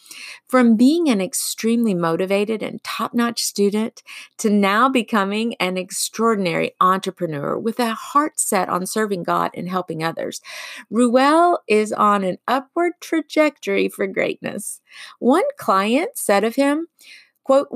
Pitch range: 190-270 Hz